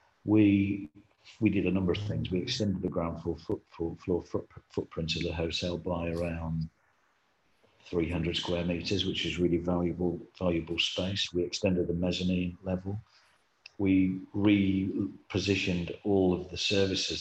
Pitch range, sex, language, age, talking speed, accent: 85-95 Hz, male, English, 50-69, 150 wpm, British